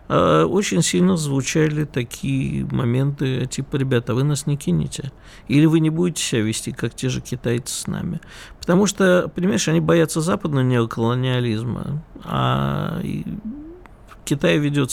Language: Russian